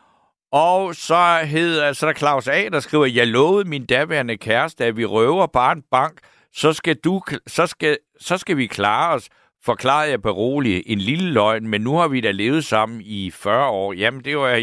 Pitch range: 105-150 Hz